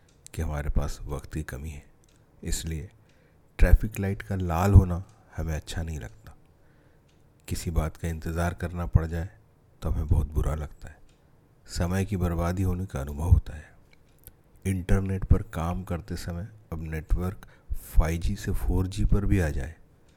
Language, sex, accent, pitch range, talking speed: Hindi, male, native, 80-95 Hz, 155 wpm